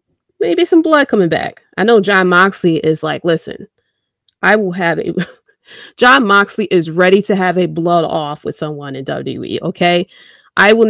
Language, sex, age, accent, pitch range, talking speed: English, female, 30-49, American, 170-230 Hz, 175 wpm